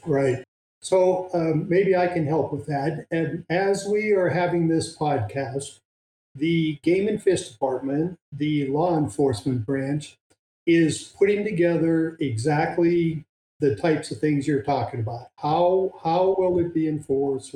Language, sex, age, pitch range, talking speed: English, male, 50-69, 140-170 Hz, 145 wpm